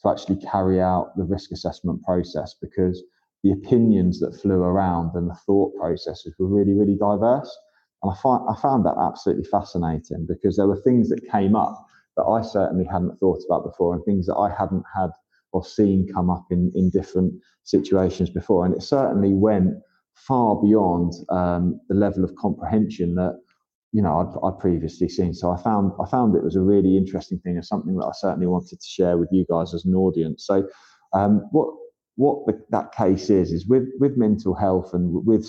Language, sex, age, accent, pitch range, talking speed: English, male, 20-39, British, 90-100 Hz, 195 wpm